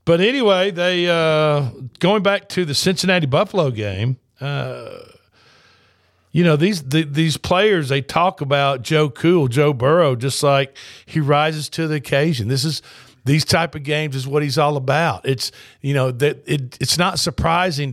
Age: 50-69